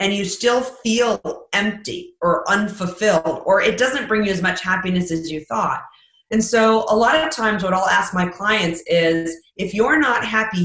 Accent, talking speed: American, 190 wpm